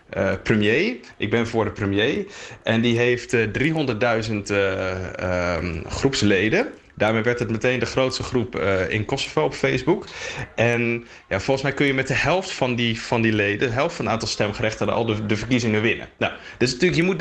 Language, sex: Dutch, male